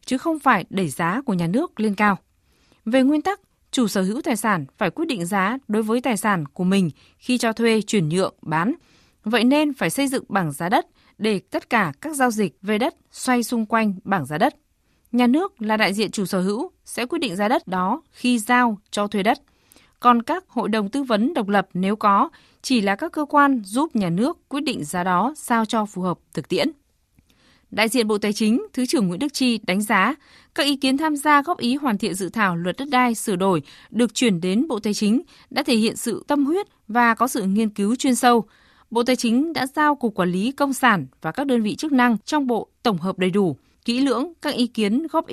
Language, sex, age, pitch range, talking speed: Vietnamese, female, 20-39, 200-265 Hz, 235 wpm